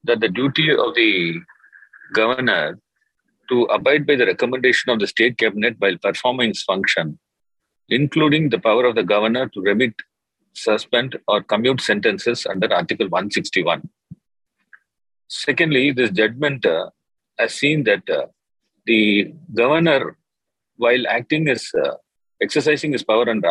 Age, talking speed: 40-59, 135 wpm